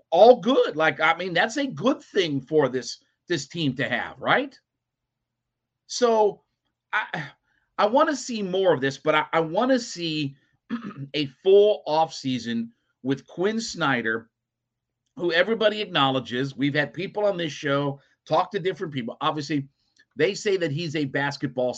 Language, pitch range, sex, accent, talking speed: English, 130-195 Hz, male, American, 150 wpm